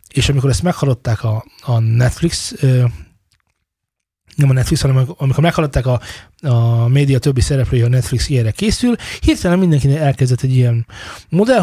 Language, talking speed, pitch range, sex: Hungarian, 150 wpm, 115-145 Hz, male